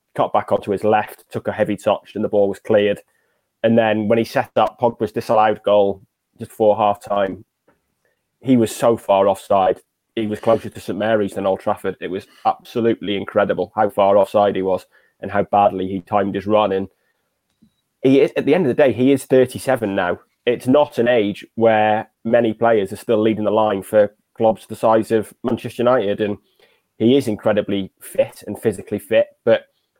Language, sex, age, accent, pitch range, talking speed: English, male, 20-39, British, 100-115 Hz, 195 wpm